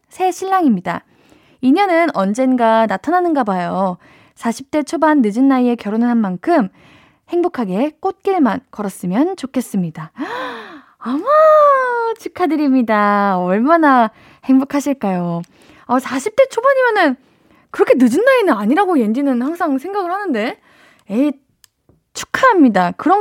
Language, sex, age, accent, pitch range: Korean, female, 20-39, native, 215-330 Hz